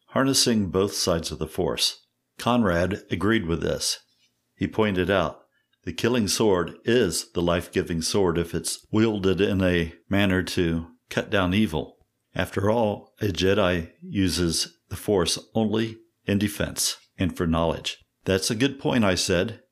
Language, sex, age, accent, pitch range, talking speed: English, male, 50-69, American, 90-110 Hz, 150 wpm